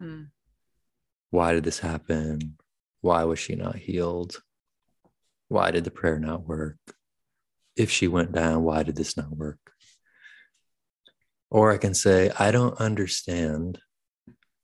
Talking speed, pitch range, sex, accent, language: 125 wpm, 80-95 Hz, male, American, English